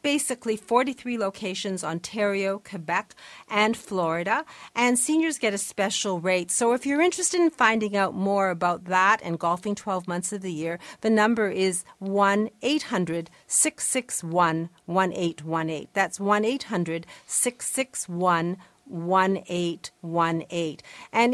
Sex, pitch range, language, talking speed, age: female, 175-235 Hz, English, 120 wpm, 50-69